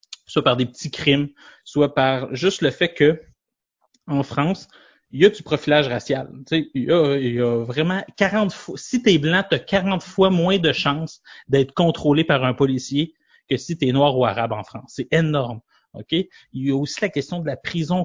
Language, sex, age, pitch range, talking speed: French, male, 30-49, 130-170 Hz, 225 wpm